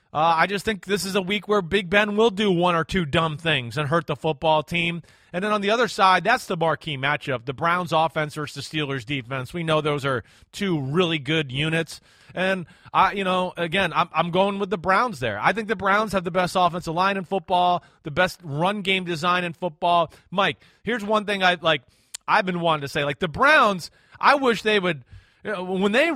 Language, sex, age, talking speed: English, male, 30-49, 230 wpm